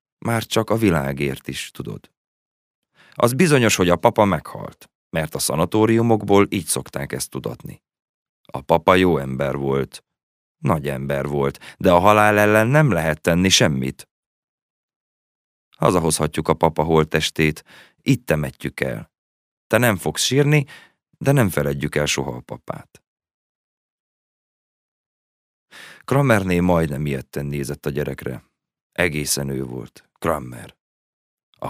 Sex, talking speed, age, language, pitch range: male, 120 wpm, 30-49, Hungarian, 70-95 Hz